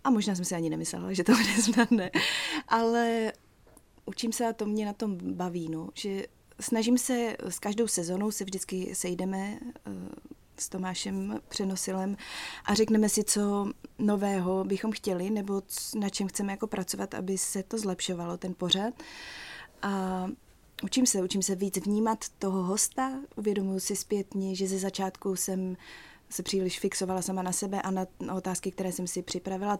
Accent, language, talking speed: native, Czech, 165 wpm